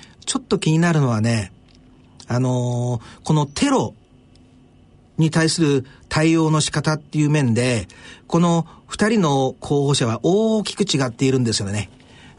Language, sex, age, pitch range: Japanese, male, 50-69, 125-170 Hz